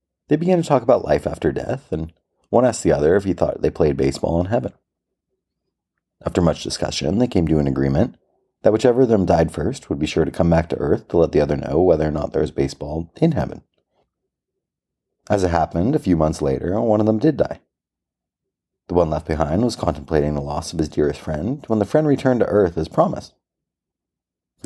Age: 30-49